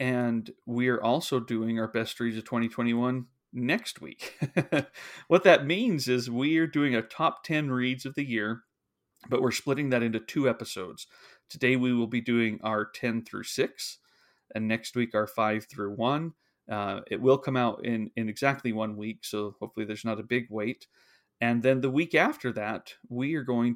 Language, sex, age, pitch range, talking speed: English, male, 30-49, 110-125 Hz, 190 wpm